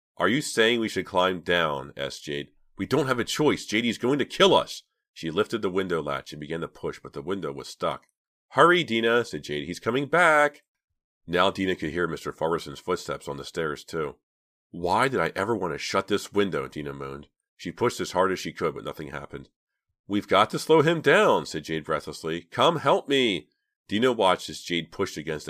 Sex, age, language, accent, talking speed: male, 40-59, English, American, 215 wpm